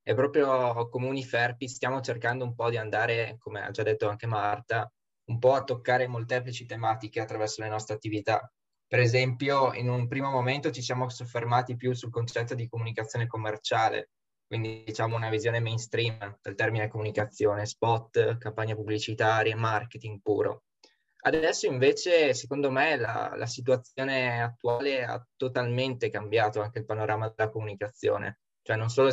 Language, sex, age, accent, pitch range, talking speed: Italian, male, 20-39, native, 110-130 Hz, 150 wpm